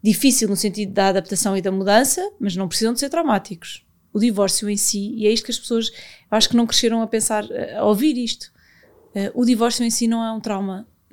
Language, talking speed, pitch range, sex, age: Portuguese, 225 wpm, 205-245 Hz, female, 20-39